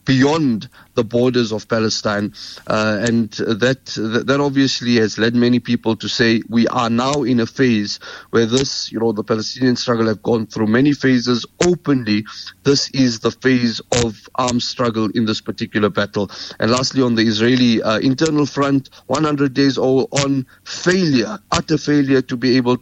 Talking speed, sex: 170 wpm, male